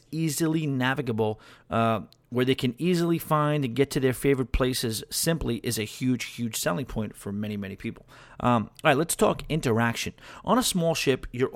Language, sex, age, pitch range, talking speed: English, male, 40-59, 115-150 Hz, 185 wpm